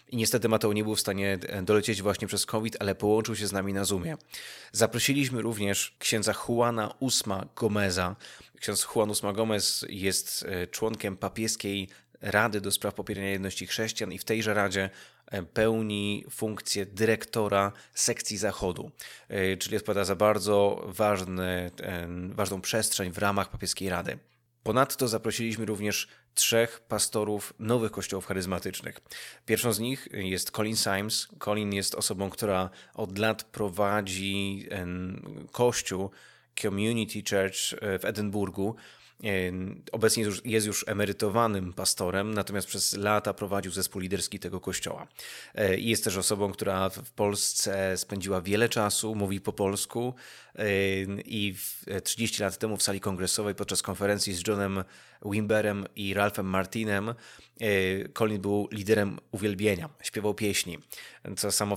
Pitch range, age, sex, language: 95-110 Hz, 20-39, male, Polish